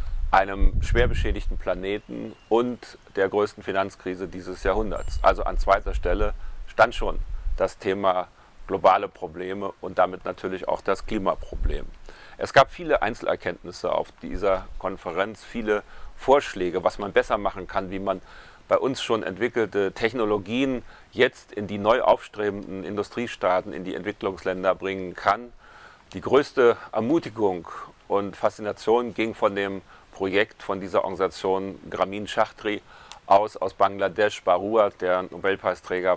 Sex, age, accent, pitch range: male, 40-59, German, 90-105 Hz